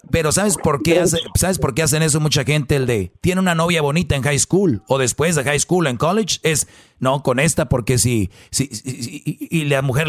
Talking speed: 240 wpm